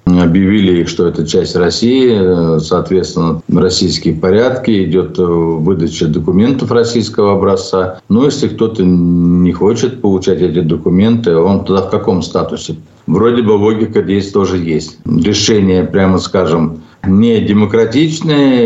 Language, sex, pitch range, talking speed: Russian, male, 90-115 Hz, 120 wpm